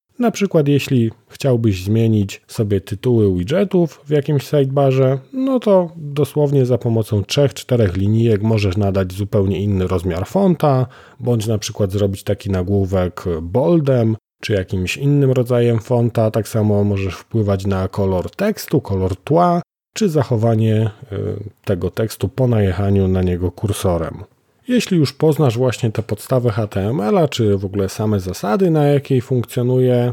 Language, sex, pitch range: Polish, male, 105-135 Hz